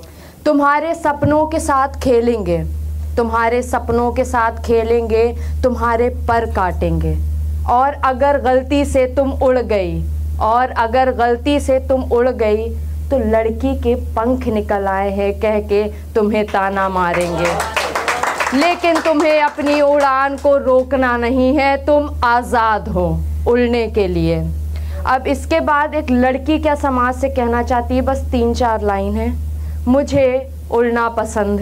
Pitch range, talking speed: 200-270 Hz, 135 wpm